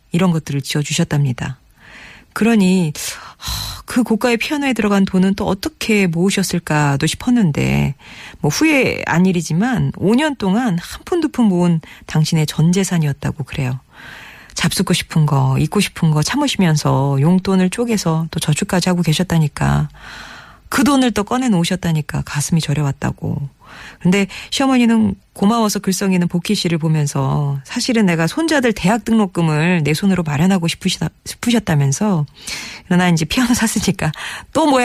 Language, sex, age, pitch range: Korean, female, 40-59, 150-205 Hz